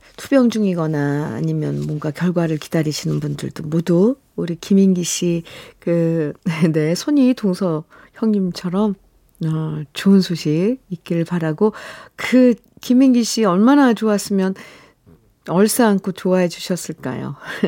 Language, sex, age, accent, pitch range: Korean, female, 40-59, native, 165-240 Hz